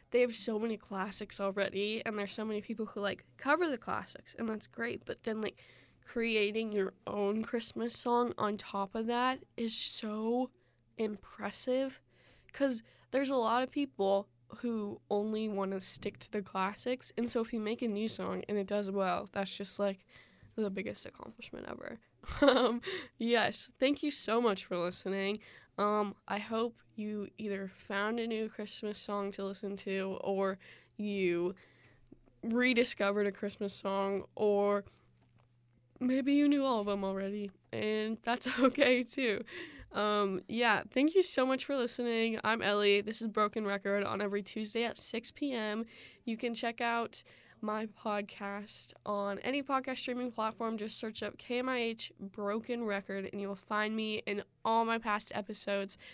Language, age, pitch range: English, 10-29, 200-240 Hz